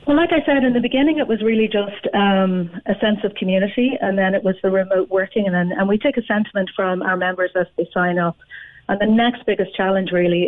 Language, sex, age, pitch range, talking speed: English, female, 40-59, 175-205 Hz, 240 wpm